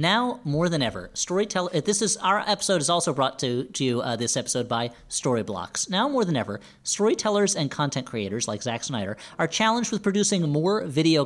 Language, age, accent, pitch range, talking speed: English, 40-59, American, 135-190 Hz, 180 wpm